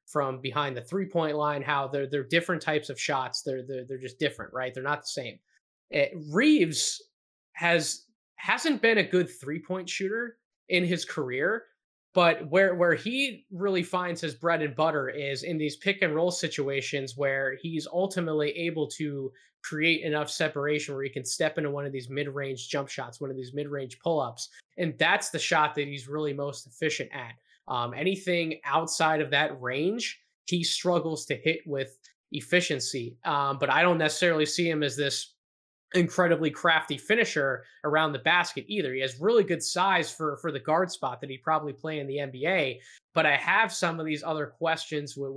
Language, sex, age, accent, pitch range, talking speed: English, male, 20-39, American, 140-170 Hz, 185 wpm